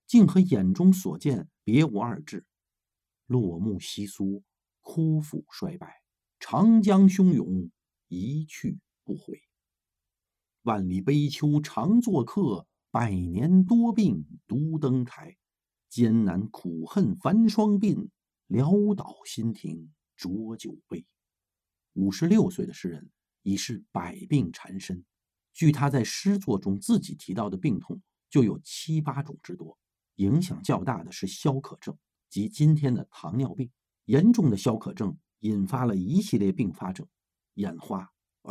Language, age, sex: Chinese, 50-69, male